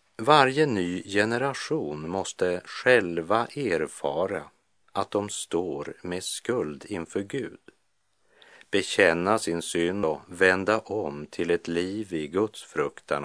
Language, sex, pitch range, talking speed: Swedish, male, 85-115 Hz, 115 wpm